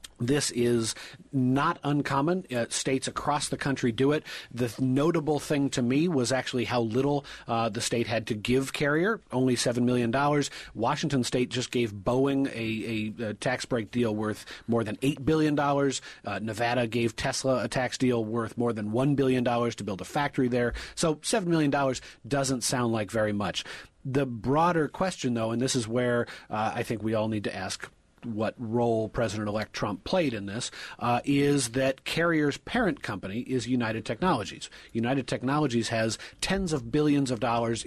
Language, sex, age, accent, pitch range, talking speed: English, male, 30-49, American, 115-145 Hz, 175 wpm